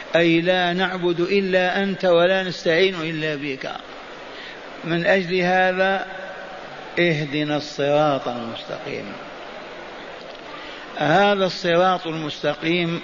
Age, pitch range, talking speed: 50-69, 155-180 Hz, 85 wpm